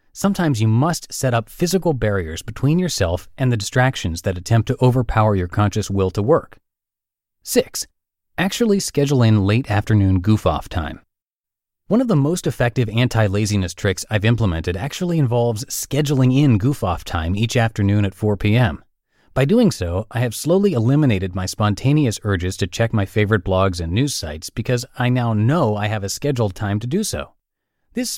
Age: 30-49